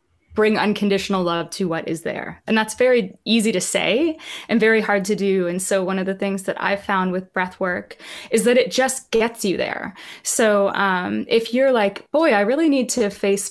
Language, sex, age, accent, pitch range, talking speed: English, female, 20-39, American, 190-225 Hz, 215 wpm